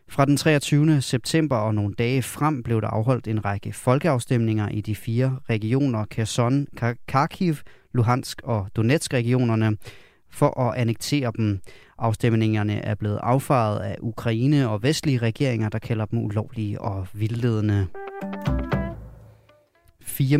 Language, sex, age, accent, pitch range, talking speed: Danish, male, 30-49, native, 110-140 Hz, 130 wpm